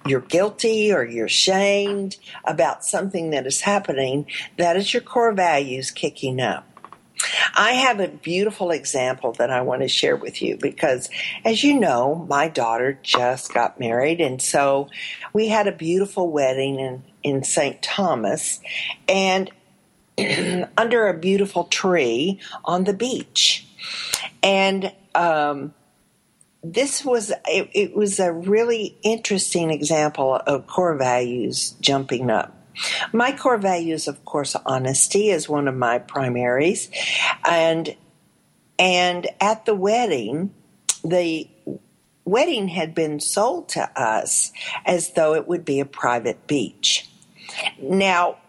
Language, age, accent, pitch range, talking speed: English, 50-69, American, 145-200 Hz, 130 wpm